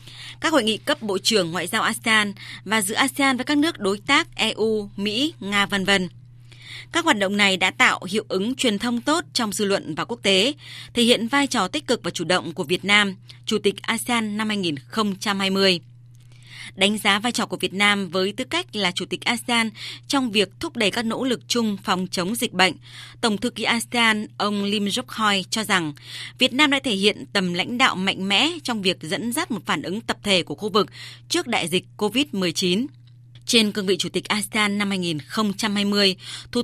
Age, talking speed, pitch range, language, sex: 20-39, 205 wpm, 185-240 Hz, Vietnamese, female